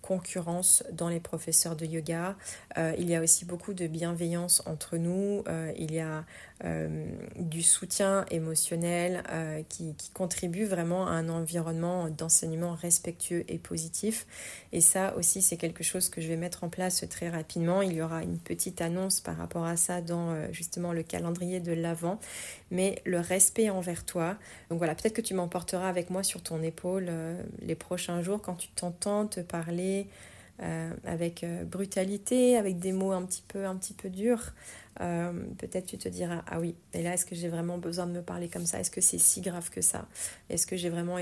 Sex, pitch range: female, 165-185 Hz